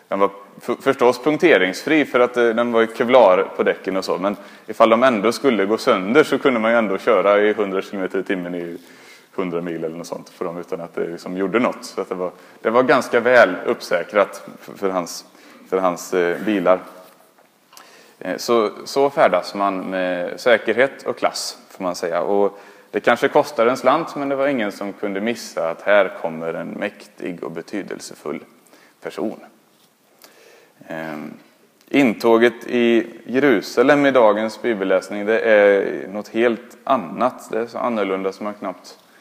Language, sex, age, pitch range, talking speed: Swedish, male, 30-49, 95-120 Hz, 165 wpm